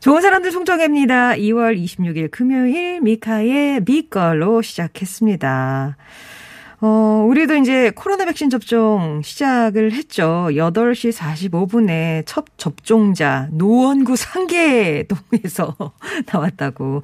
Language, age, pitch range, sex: Korean, 40-59, 170-255 Hz, female